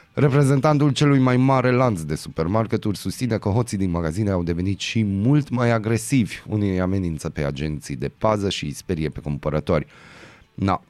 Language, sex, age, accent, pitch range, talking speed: Romanian, male, 30-49, native, 85-115 Hz, 170 wpm